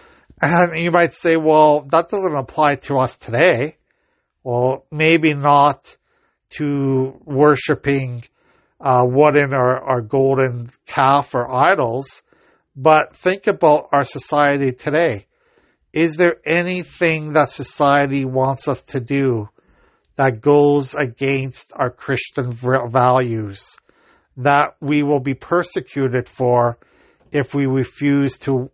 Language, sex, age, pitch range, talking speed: English, male, 50-69, 125-150 Hz, 115 wpm